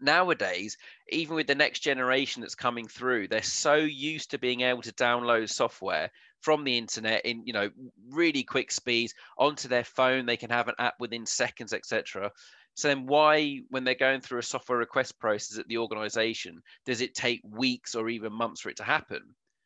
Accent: British